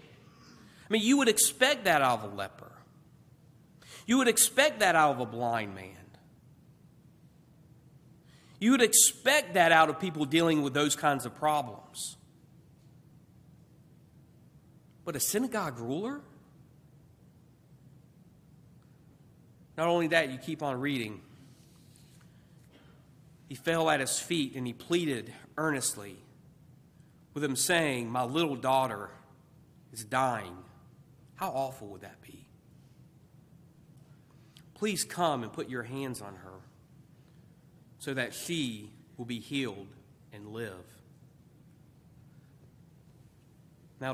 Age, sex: 40-59, male